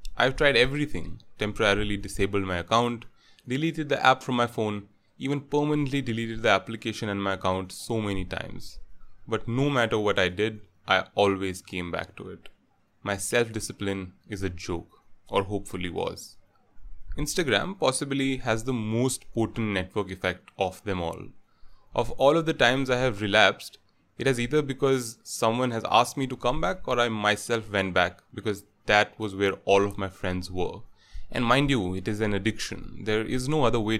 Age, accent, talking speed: 20-39, Indian, 175 wpm